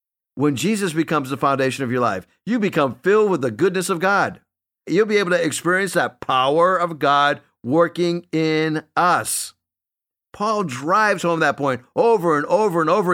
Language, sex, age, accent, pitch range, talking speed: English, male, 50-69, American, 120-175 Hz, 175 wpm